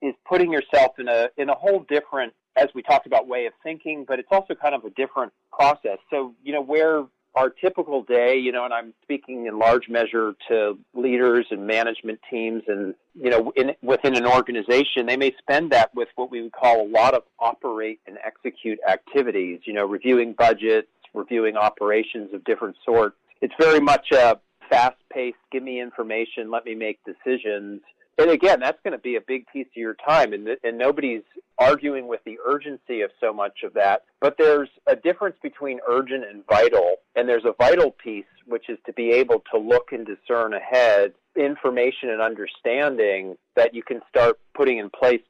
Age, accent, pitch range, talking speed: 40-59, American, 115-175 Hz, 190 wpm